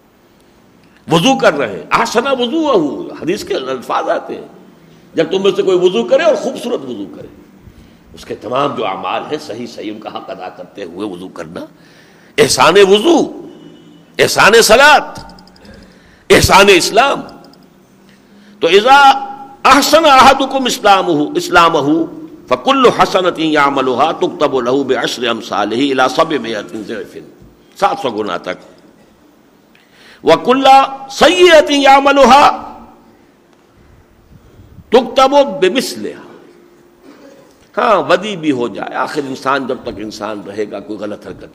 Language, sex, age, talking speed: Urdu, male, 60-79, 110 wpm